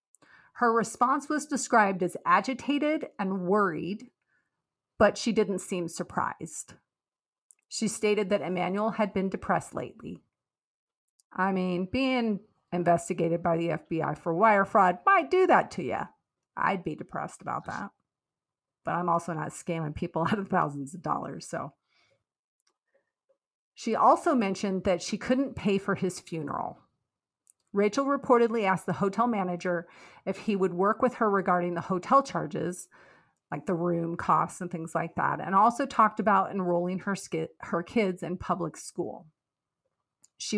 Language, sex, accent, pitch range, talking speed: English, female, American, 175-225 Hz, 150 wpm